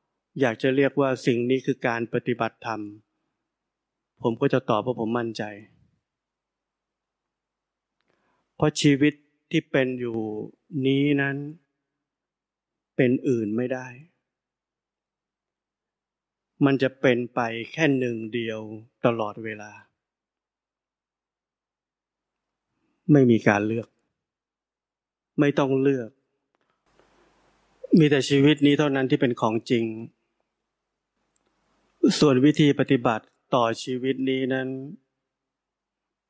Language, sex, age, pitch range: Thai, male, 20-39, 120-140 Hz